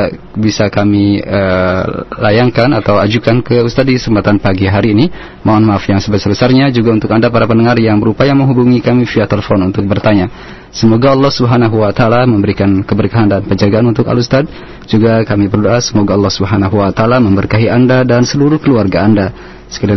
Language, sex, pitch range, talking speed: Malay, male, 100-125 Hz, 170 wpm